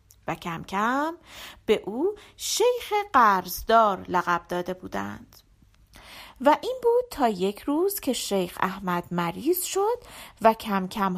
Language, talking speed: Persian, 130 wpm